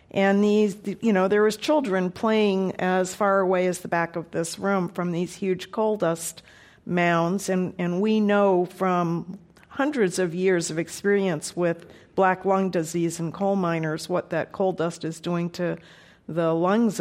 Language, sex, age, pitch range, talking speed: English, female, 50-69, 170-195 Hz, 175 wpm